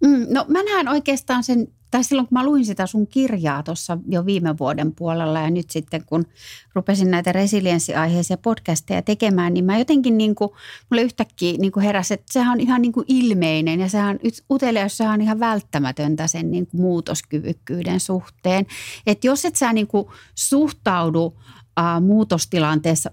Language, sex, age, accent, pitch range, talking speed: Finnish, female, 30-49, native, 155-205 Hz, 160 wpm